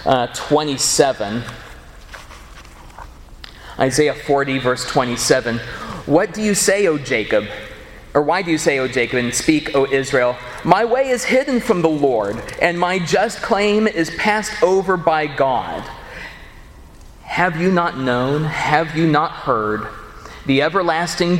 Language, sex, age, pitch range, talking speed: English, male, 30-49, 130-175 Hz, 135 wpm